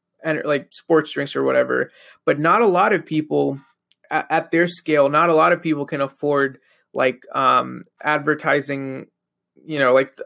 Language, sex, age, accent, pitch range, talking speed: English, male, 20-39, American, 140-160 Hz, 170 wpm